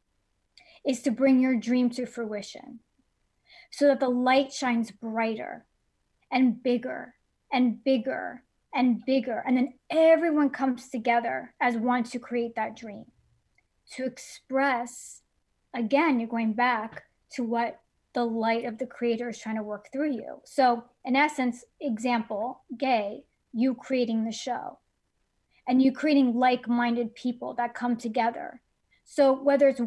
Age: 30-49